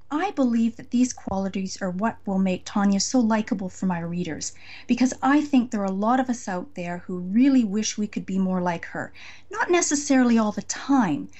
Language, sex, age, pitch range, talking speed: English, female, 40-59, 200-255 Hz, 210 wpm